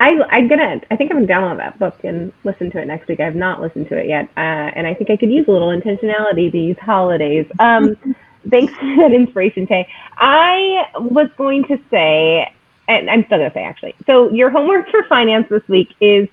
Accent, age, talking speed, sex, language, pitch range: American, 30-49, 215 wpm, female, English, 185-245 Hz